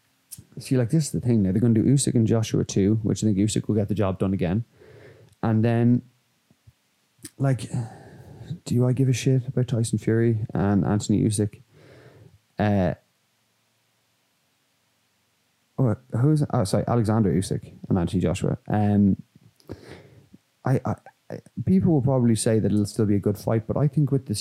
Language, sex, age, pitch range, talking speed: English, male, 20-39, 105-120 Hz, 165 wpm